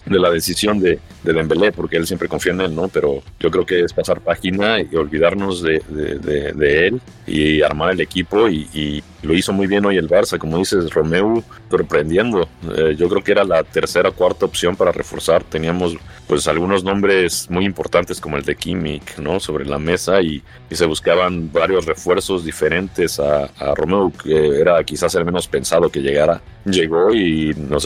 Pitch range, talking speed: 80-105 Hz, 195 wpm